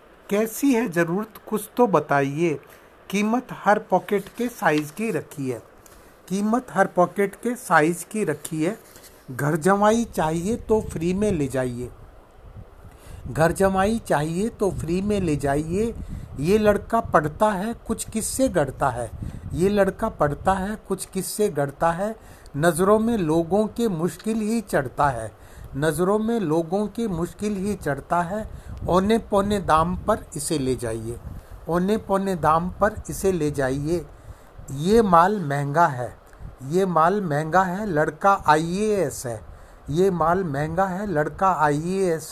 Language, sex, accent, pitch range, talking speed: Hindi, male, native, 150-205 Hz, 145 wpm